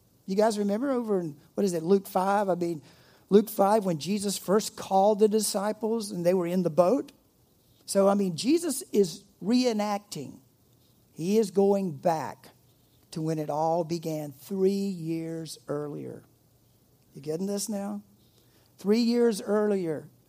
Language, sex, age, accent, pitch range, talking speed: English, male, 50-69, American, 145-195 Hz, 150 wpm